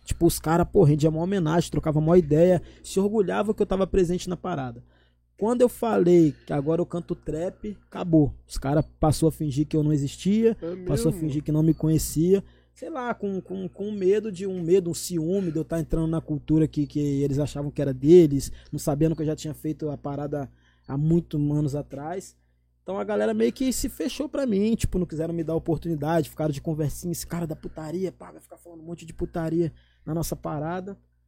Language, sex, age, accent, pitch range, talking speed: Portuguese, male, 20-39, Brazilian, 145-175 Hz, 220 wpm